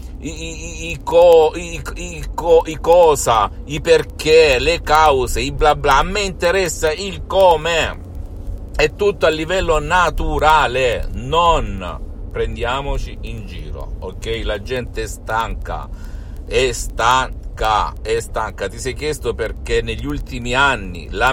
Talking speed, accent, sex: 130 wpm, native, male